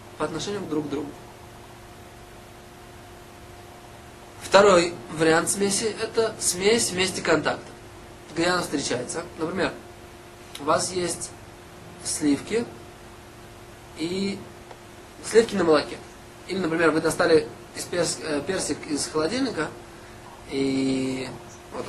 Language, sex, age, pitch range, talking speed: Russian, male, 20-39, 115-165 Hz, 95 wpm